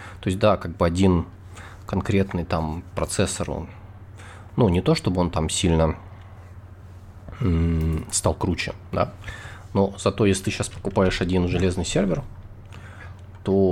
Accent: native